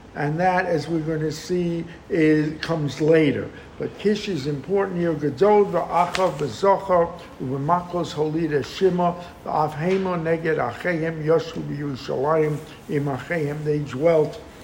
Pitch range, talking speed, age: 145-175 Hz, 80 wpm, 60-79